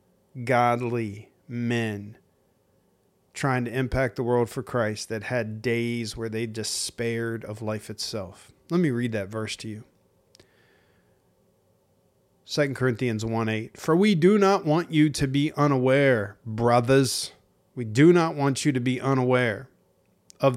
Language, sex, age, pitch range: English, male, 40-59, 115-145 Hz